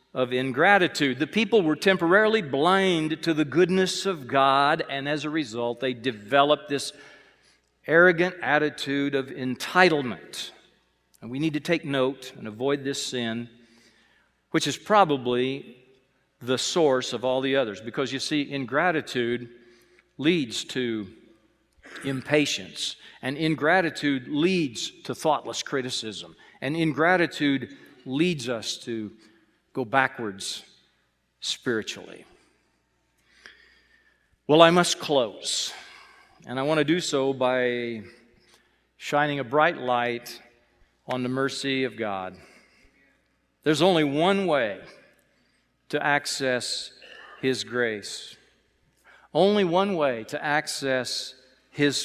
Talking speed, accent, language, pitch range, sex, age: 110 wpm, American, English, 125-165 Hz, male, 50-69